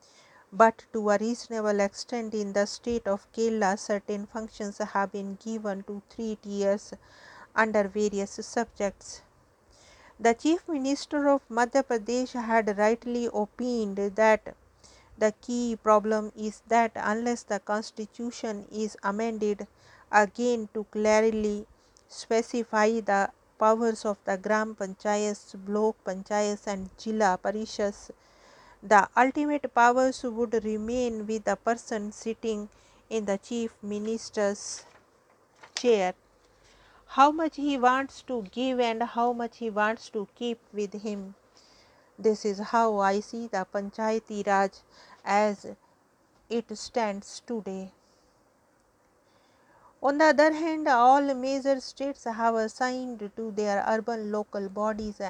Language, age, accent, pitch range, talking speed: English, 50-69, Indian, 205-235 Hz, 120 wpm